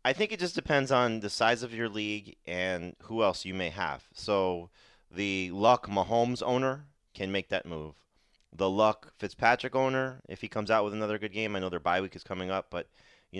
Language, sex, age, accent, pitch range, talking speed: English, male, 30-49, American, 85-105 Hz, 215 wpm